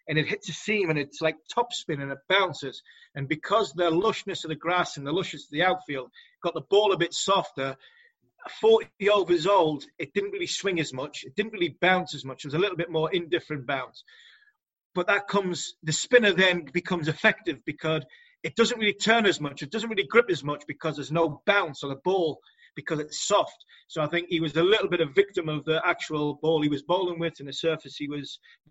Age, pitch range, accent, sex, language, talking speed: 30-49, 150-190 Hz, British, male, English, 225 wpm